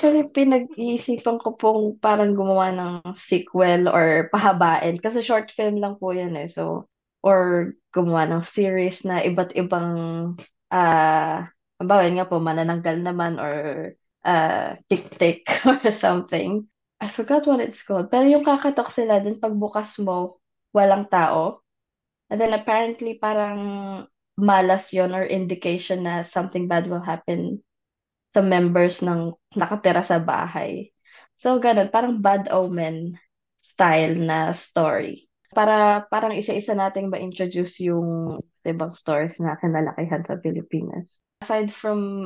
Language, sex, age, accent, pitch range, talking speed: Filipino, female, 20-39, native, 170-205 Hz, 130 wpm